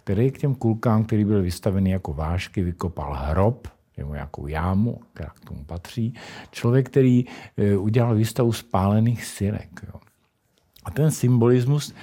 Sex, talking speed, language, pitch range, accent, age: male, 130 wpm, Czech, 90-115 Hz, native, 50-69